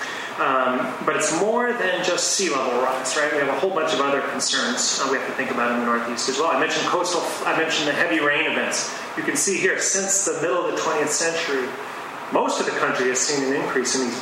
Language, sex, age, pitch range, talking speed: English, male, 30-49, 135-165 Hz, 250 wpm